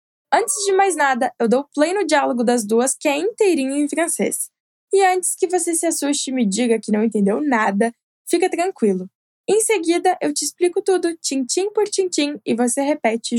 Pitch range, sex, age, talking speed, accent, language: 235-325 Hz, female, 10-29, 195 wpm, Brazilian, Portuguese